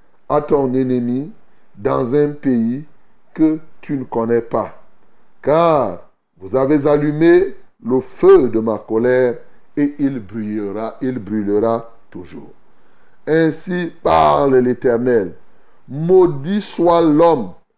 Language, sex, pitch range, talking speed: French, male, 130-175 Hz, 105 wpm